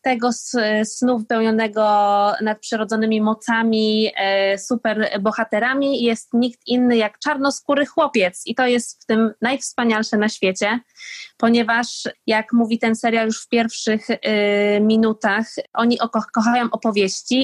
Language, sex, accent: Polish, female, native